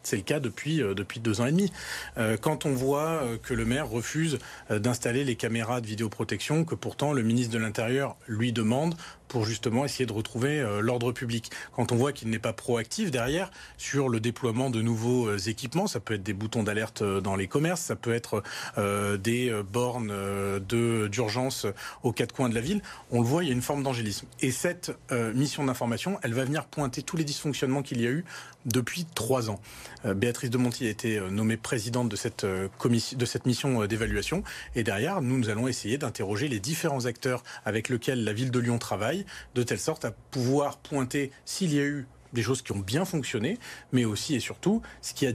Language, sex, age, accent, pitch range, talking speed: French, male, 40-59, French, 115-140 Hz, 200 wpm